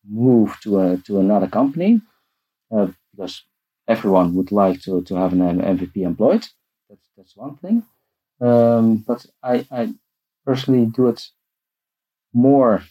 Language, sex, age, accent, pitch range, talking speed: English, male, 50-69, Dutch, 95-125 Hz, 135 wpm